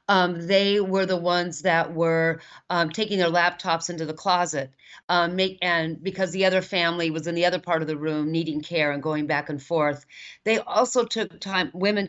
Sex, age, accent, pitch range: female, 40-59, American, 160-190 Hz